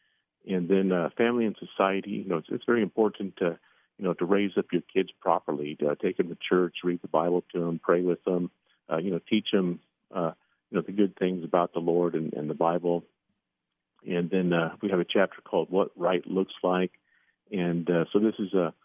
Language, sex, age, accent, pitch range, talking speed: English, male, 50-69, American, 85-100 Hz, 225 wpm